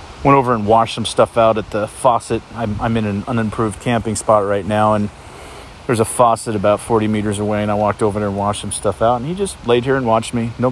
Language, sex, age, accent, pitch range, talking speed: English, male, 40-59, American, 95-110 Hz, 260 wpm